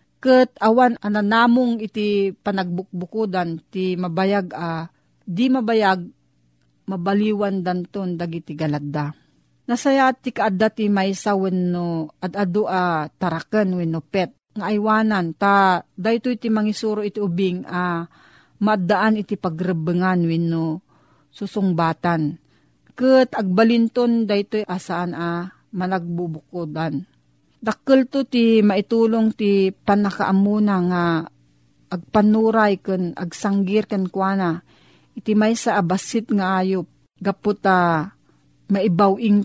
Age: 40-59